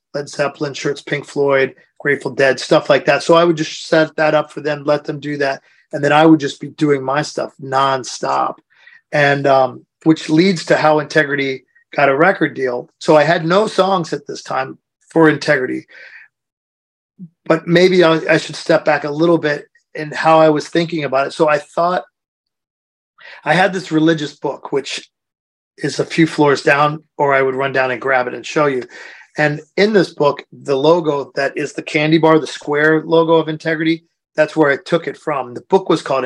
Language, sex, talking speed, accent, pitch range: English, male, 200 wpm, American, 140-165 Hz